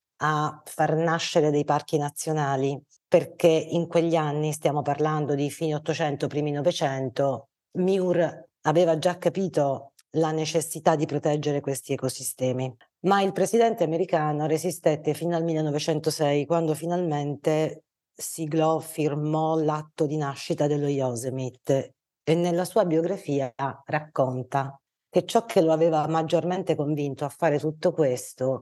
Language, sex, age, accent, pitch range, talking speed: Italian, female, 40-59, native, 145-170 Hz, 125 wpm